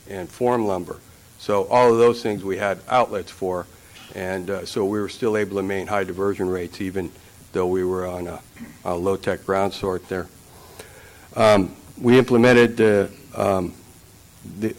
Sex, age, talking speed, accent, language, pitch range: male, 60-79, 160 wpm, American, English, 95-120 Hz